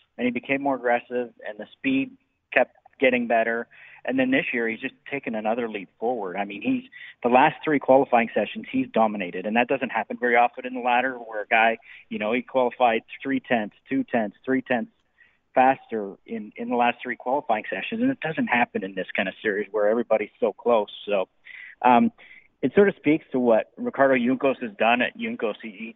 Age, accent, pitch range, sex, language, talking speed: 40-59, American, 115-150 Hz, male, English, 210 wpm